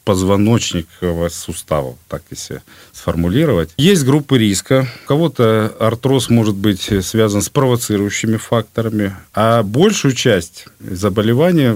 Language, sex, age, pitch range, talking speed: Russian, male, 40-59, 95-130 Hz, 105 wpm